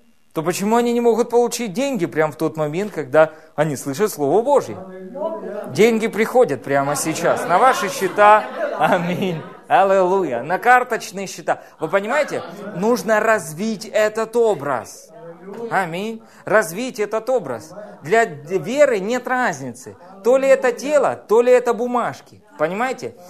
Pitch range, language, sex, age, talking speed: 185-250 Hz, Russian, male, 30-49, 130 wpm